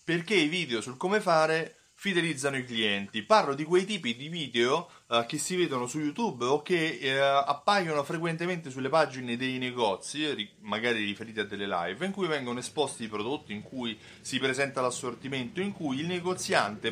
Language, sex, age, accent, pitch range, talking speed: Italian, male, 30-49, native, 120-175 Hz, 175 wpm